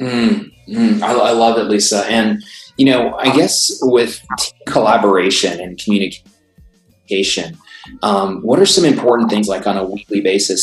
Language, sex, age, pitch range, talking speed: English, male, 20-39, 90-115 Hz, 150 wpm